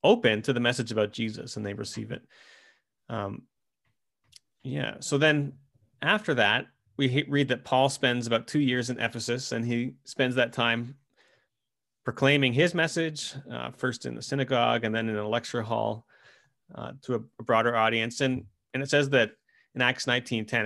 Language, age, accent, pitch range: English, 30-49, American, 110-140 Hz